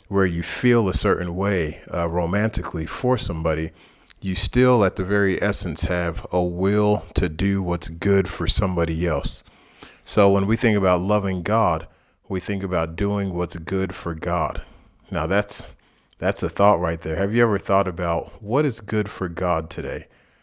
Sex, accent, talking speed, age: male, American, 175 wpm, 30-49